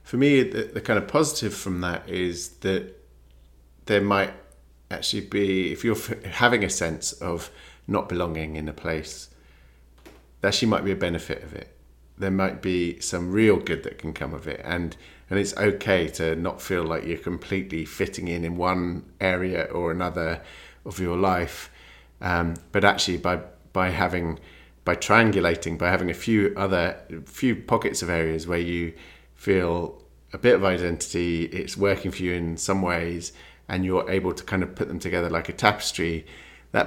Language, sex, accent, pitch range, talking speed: English, male, British, 80-95 Hz, 175 wpm